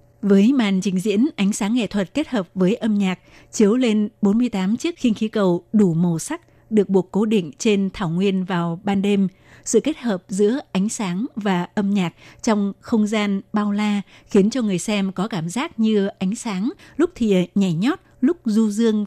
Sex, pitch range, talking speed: female, 185-220 Hz, 200 wpm